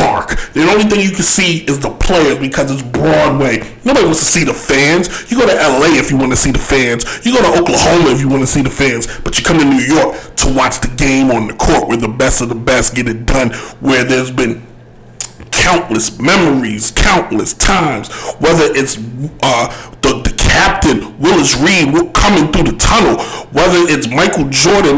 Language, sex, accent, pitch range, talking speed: English, male, American, 130-195 Hz, 200 wpm